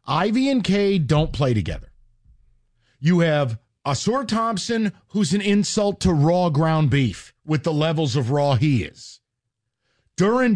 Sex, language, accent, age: male, English, American, 40-59